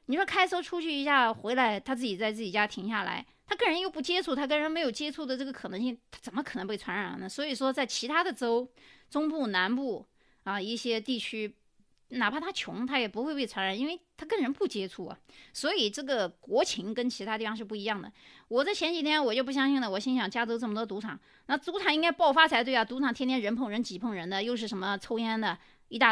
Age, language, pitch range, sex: 20-39, Chinese, 210-275 Hz, female